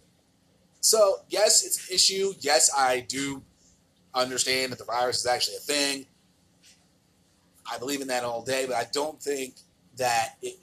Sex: male